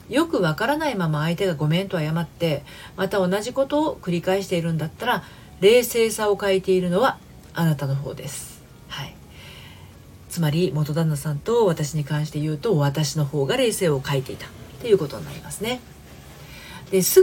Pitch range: 145-195 Hz